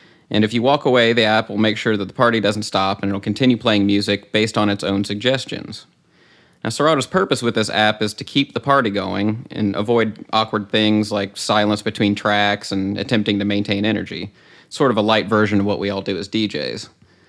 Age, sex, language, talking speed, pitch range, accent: 30-49, male, English, 215 wpm, 100-110 Hz, American